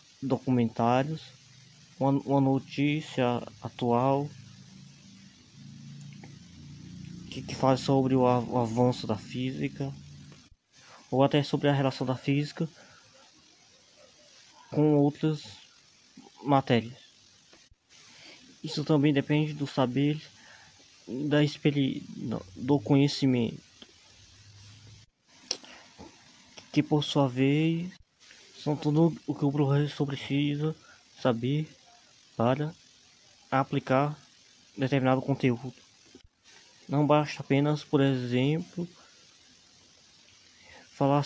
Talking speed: 75 wpm